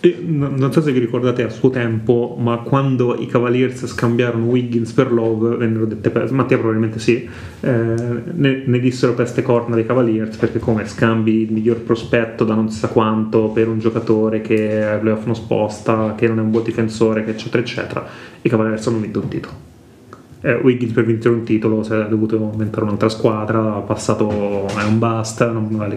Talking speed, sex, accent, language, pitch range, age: 190 wpm, male, native, Italian, 110-125 Hz, 30-49